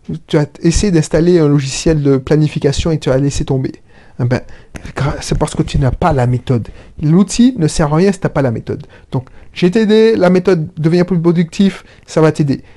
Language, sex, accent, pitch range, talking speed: French, male, French, 140-180 Hz, 210 wpm